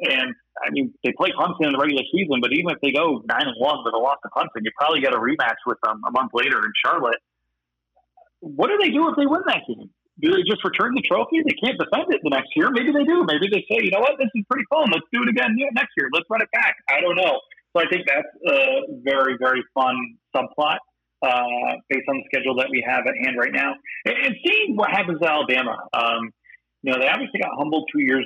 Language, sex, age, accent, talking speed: English, male, 30-49, American, 255 wpm